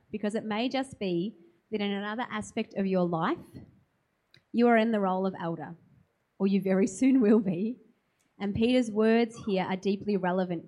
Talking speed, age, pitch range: 180 wpm, 30-49, 180-230 Hz